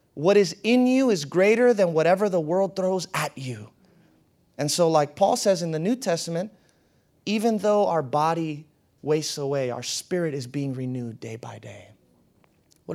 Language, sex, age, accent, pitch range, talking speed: English, male, 30-49, American, 135-185 Hz, 170 wpm